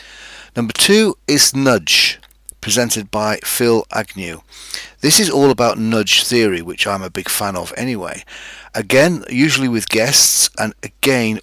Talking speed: 140 wpm